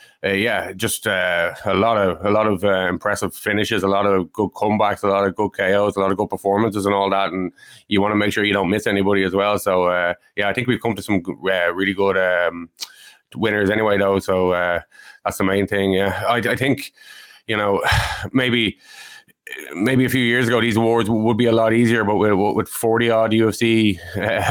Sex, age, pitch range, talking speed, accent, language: male, 20-39, 95-110 Hz, 225 wpm, Irish, English